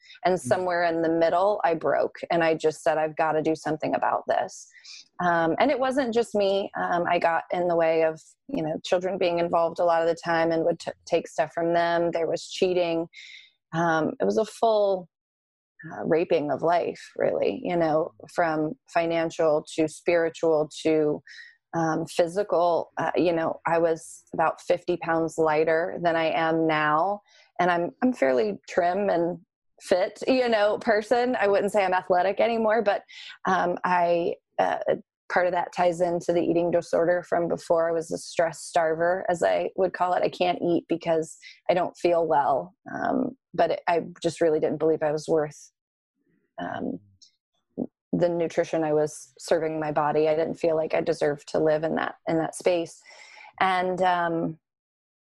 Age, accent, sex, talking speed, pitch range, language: 20-39, American, female, 180 wpm, 160-185 Hz, English